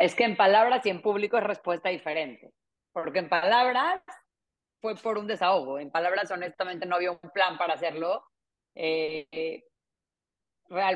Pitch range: 165-200 Hz